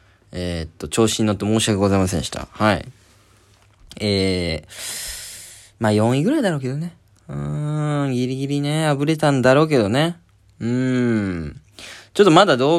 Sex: male